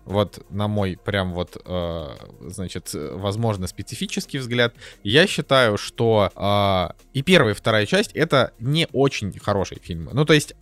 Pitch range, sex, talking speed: 100-135 Hz, male, 155 wpm